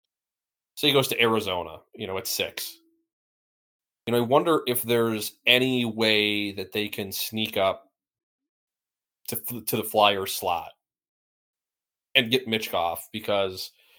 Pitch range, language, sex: 105-125 Hz, English, male